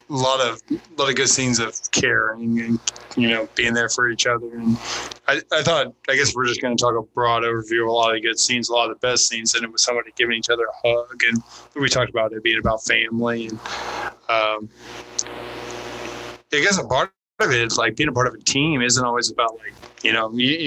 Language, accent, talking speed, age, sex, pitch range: English, American, 245 wpm, 20-39, male, 115-130 Hz